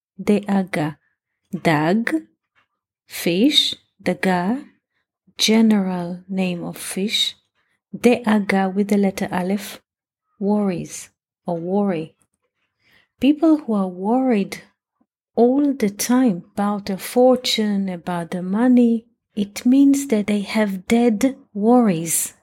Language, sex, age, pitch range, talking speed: English, female, 30-49, 185-230 Hz, 100 wpm